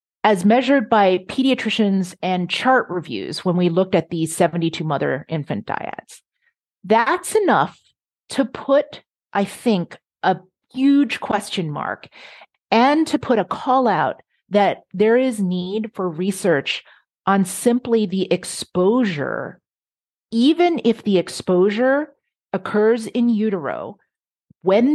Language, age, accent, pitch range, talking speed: English, 40-59, American, 185-235 Hz, 120 wpm